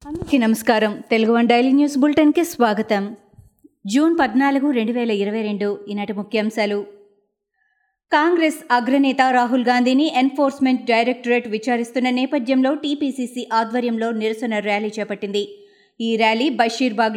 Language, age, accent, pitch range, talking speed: Telugu, 20-39, native, 225-275 Hz, 55 wpm